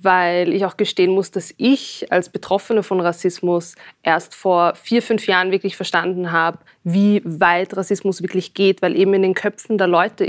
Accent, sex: German, female